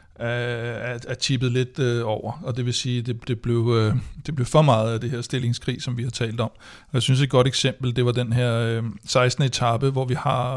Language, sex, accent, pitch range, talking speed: Danish, male, native, 120-135 Hz, 215 wpm